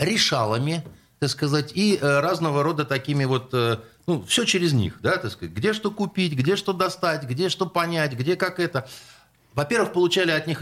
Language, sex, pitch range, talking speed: Russian, male, 120-170 Hz, 175 wpm